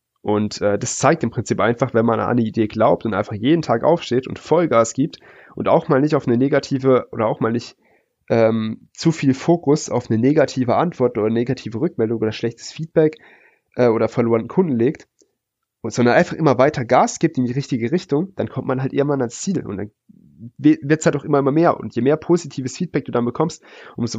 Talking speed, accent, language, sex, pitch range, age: 220 wpm, German, German, male, 115-145 Hz, 30-49